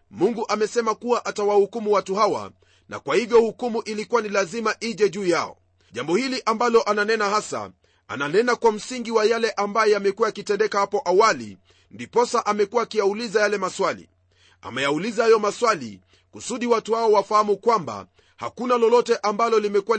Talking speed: 145 wpm